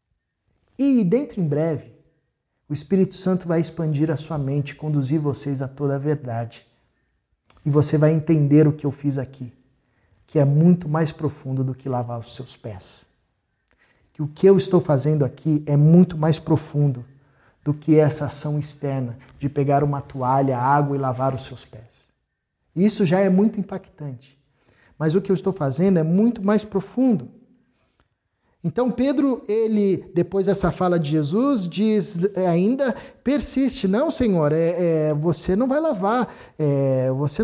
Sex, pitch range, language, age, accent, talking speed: male, 140-185 Hz, Portuguese, 50-69, Brazilian, 160 wpm